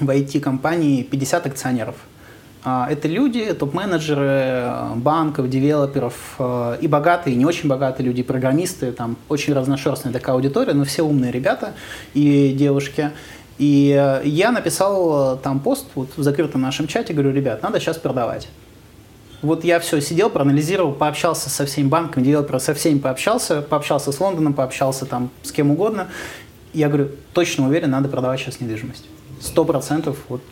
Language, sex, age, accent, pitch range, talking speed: Russian, male, 20-39, native, 130-160 Hz, 145 wpm